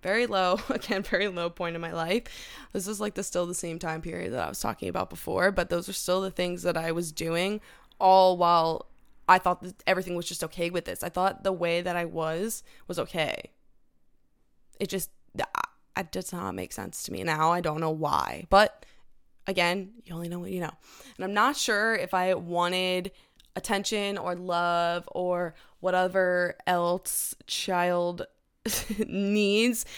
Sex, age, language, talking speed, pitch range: female, 20-39, English, 180 wpm, 175-205 Hz